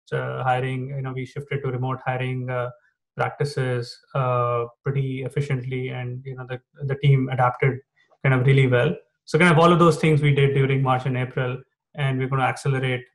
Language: English